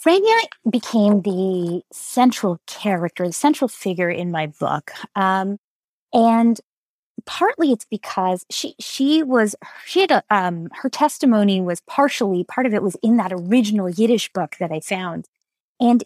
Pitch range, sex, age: 190-255 Hz, female, 30-49